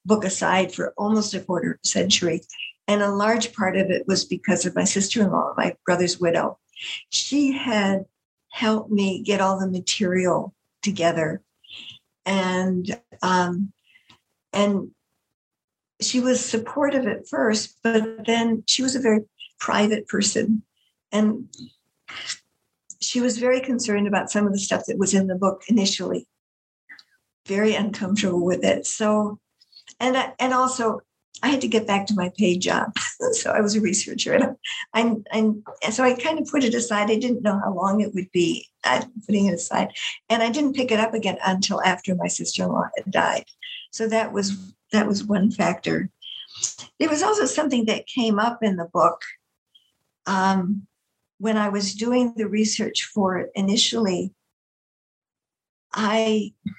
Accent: American